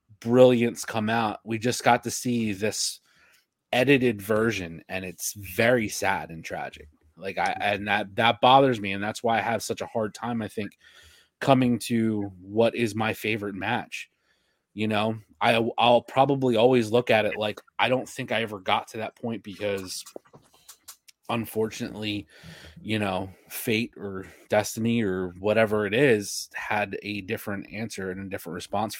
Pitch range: 105-120 Hz